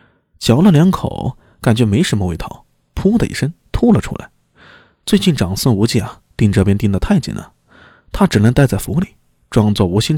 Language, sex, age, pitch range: Chinese, male, 20-39, 100-155 Hz